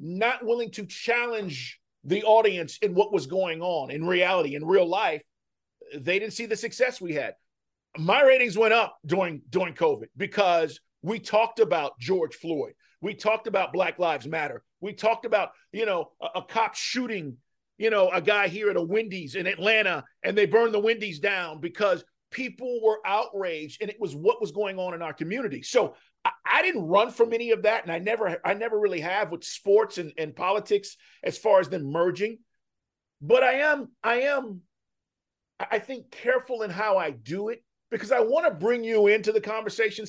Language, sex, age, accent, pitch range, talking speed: English, male, 50-69, American, 195-275 Hz, 190 wpm